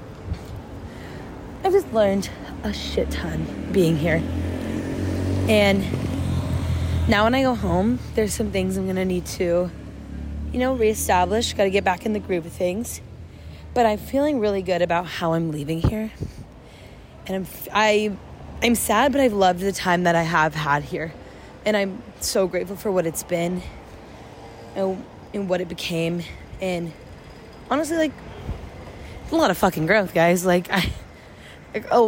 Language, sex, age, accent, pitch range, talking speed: English, female, 20-39, American, 170-215 Hz, 155 wpm